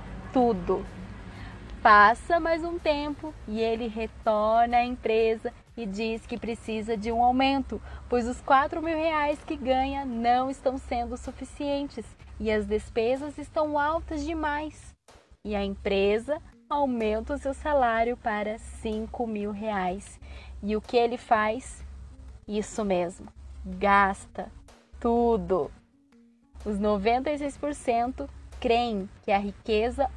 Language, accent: Portuguese, Brazilian